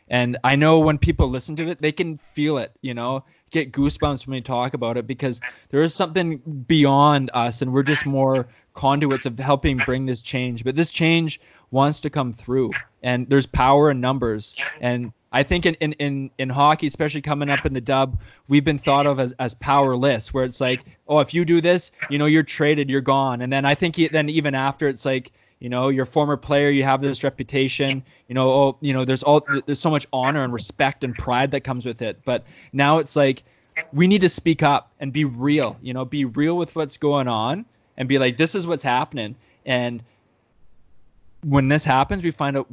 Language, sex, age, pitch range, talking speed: English, male, 20-39, 125-150 Hz, 220 wpm